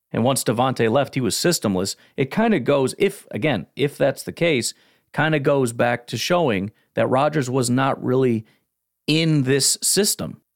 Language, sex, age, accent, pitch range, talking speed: English, male, 40-59, American, 110-140 Hz, 175 wpm